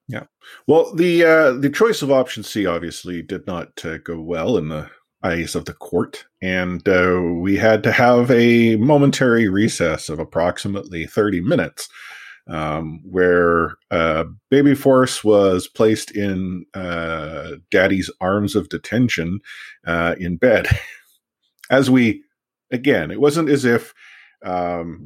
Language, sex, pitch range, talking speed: English, male, 85-125 Hz, 140 wpm